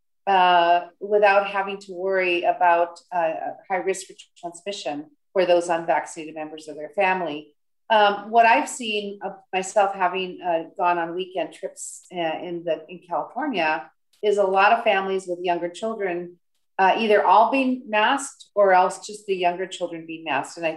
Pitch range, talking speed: 160-200 Hz, 170 wpm